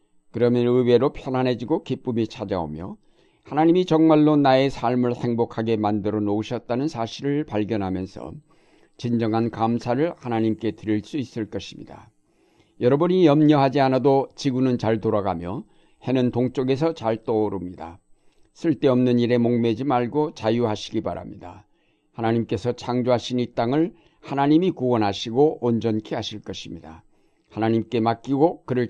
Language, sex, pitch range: Korean, male, 110-140 Hz